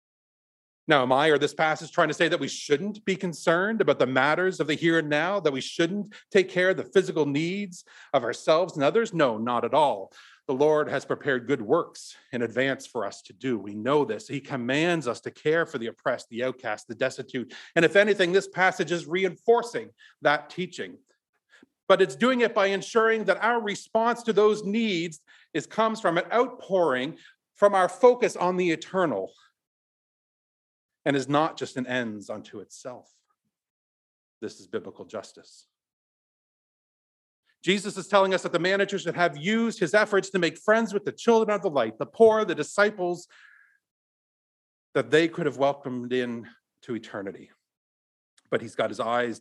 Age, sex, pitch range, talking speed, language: 40-59, male, 145-205 Hz, 180 wpm, English